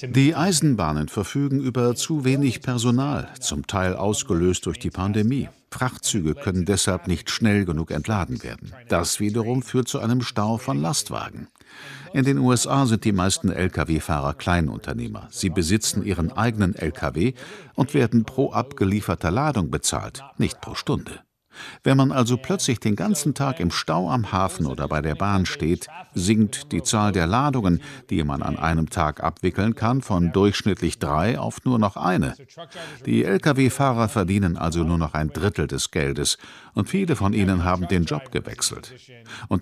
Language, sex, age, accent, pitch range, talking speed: German, male, 50-69, German, 90-130 Hz, 160 wpm